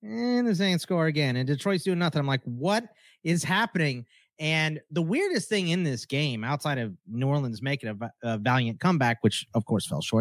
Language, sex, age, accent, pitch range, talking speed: English, male, 30-49, American, 120-170 Hz, 205 wpm